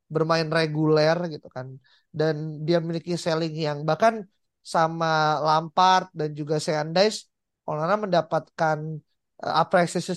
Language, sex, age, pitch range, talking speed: Indonesian, male, 20-39, 150-185 Hz, 110 wpm